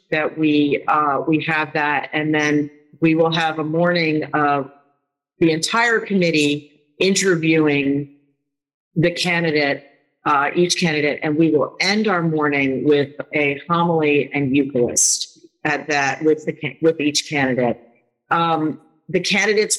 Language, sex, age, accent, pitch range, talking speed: English, female, 40-59, American, 150-195 Hz, 135 wpm